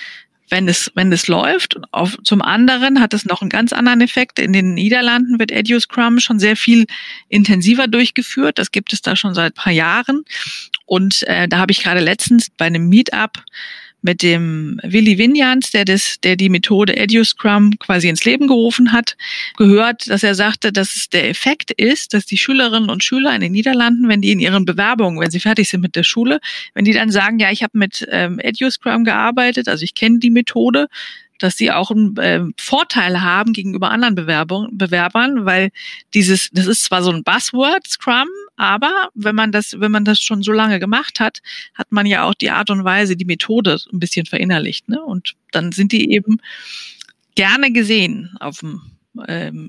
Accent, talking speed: German, 195 wpm